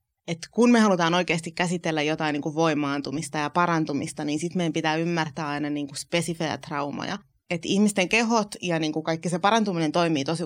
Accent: native